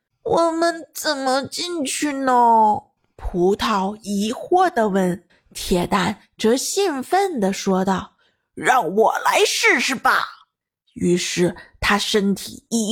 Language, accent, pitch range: Chinese, native, 200-290 Hz